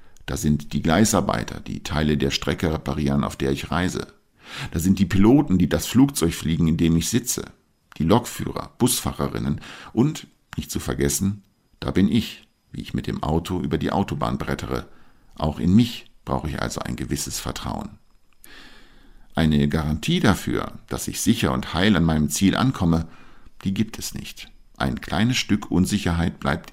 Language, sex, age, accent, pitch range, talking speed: German, male, 50-69, German, 75-95 Hz, 165 wpm